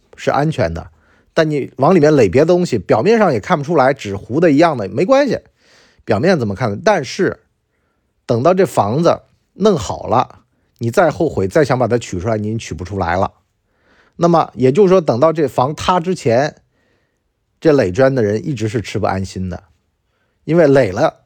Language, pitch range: Chinese, 105-165 Hz